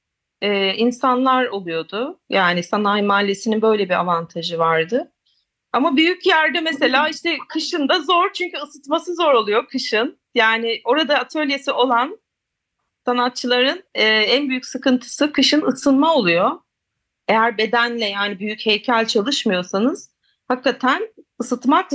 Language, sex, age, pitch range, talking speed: Turkish, female, 40-59, 225-290 Hz, 110 wpm